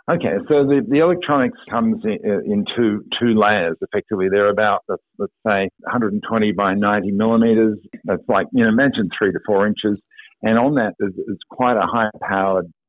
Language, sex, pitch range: English, male, 100-125 Hz